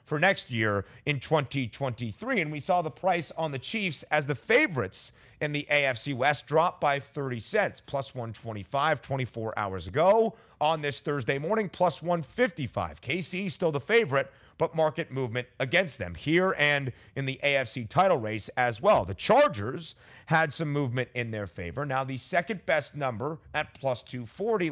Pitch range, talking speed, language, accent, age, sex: 120-160 Hz, 165 wpm, English, American, 30-49, male